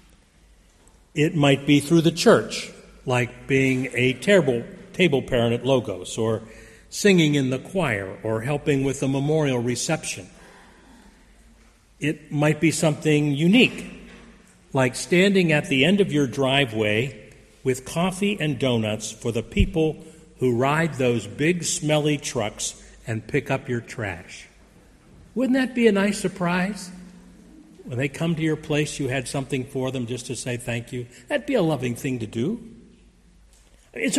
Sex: male